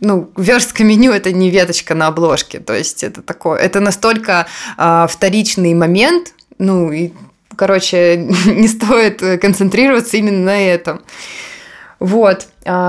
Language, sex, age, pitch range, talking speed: Russian, female, 20-39, 180-215 Hz, 125 wpm